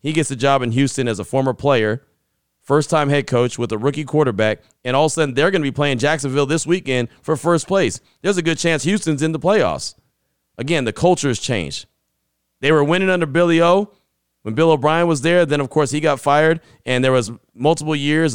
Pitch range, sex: 130-155 Hz, male